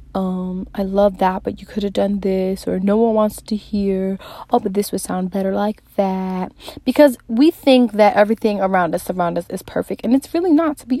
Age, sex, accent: 20-39, female, American